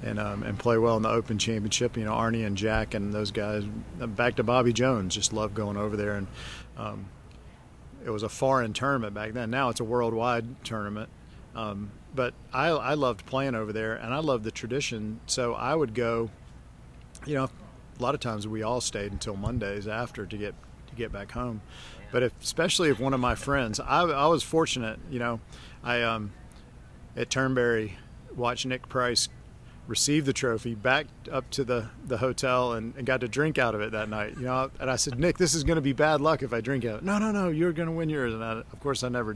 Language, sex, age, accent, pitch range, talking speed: English, male, 50-69, American, 110-130 Hz, 220 wpm